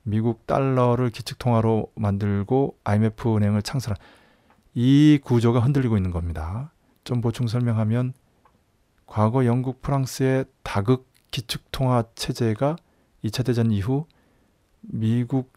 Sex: male